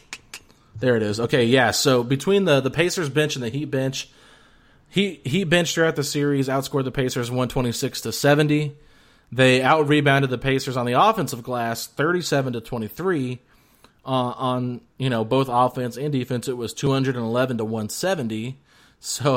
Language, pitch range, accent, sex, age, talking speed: English, 115-140 Hz, American, male, 30-49, 165 wpm